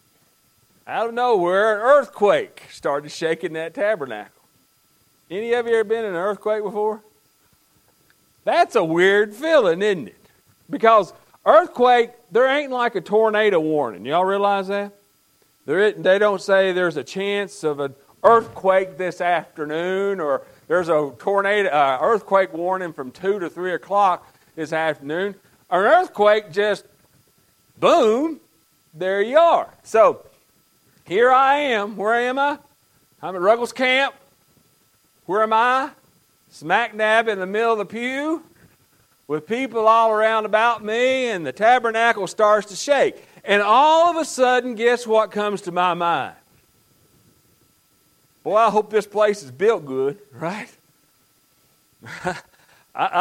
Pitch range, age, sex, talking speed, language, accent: 190-240 Hz, 40-59, male, 140 wpm, English, American